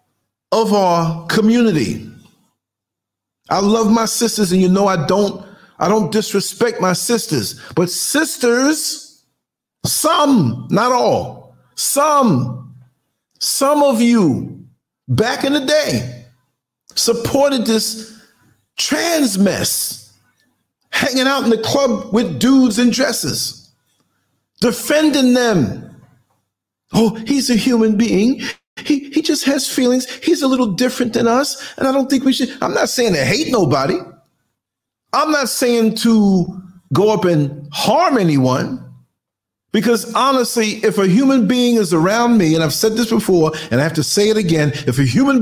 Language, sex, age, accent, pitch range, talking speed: English, male, 50-69, American, 175-245 Hz, 135 wpm